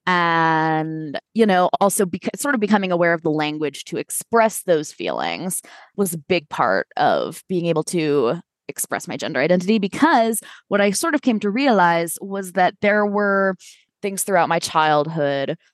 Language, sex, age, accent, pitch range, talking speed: English, female, 20-39, American, 160-210 Hz, 165 wpm